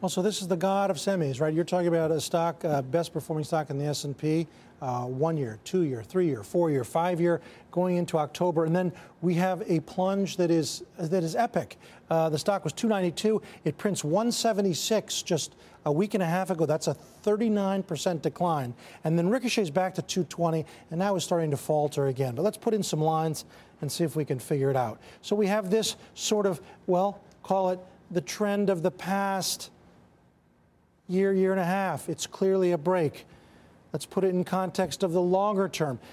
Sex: male